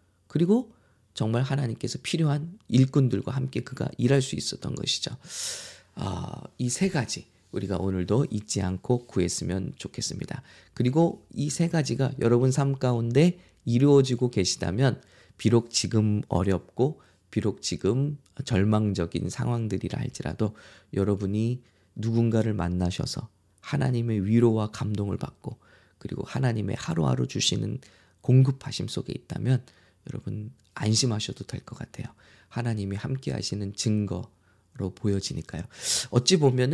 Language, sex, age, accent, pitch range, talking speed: English, male, 20-39, Korean, 95-130 Hz, 100 wpm